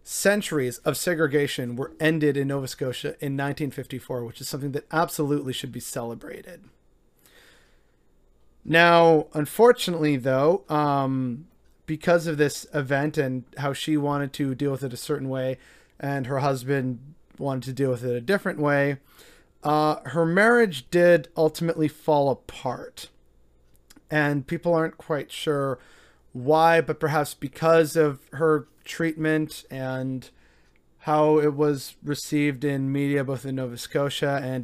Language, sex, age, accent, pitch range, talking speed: English, male, 30-49, American, 130-160 Hz, 135 wpm